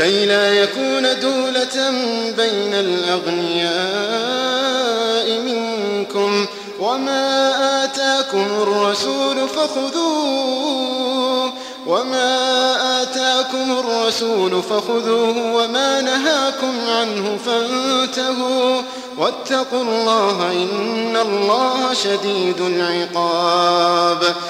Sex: male